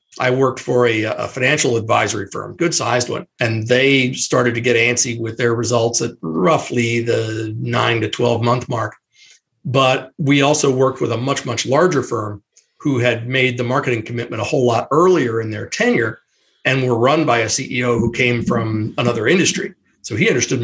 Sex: male